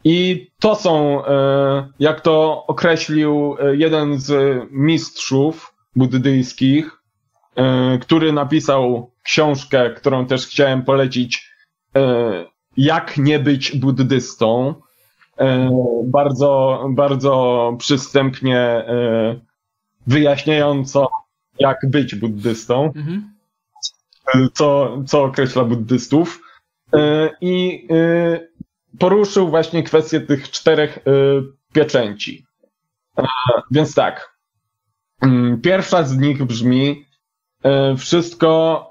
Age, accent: 20-39, native